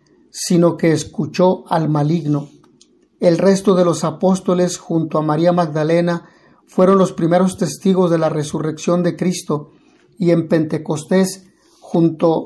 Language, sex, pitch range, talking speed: Spanish, male, 160-180 Hz, 130 wpm